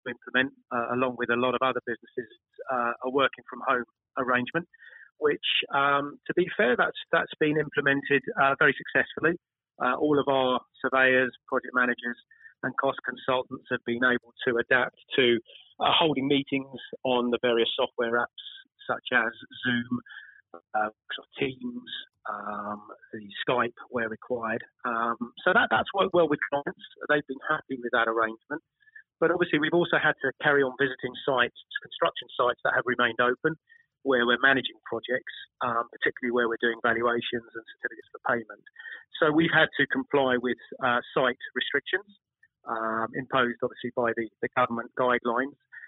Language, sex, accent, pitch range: English, male, British, 120-170 Hz